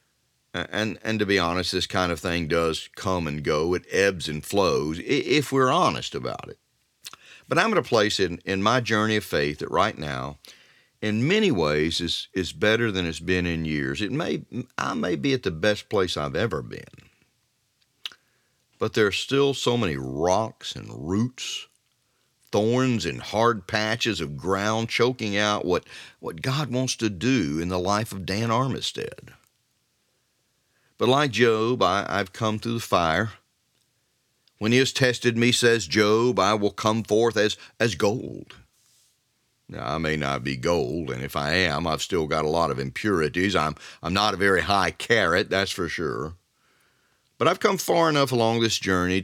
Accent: American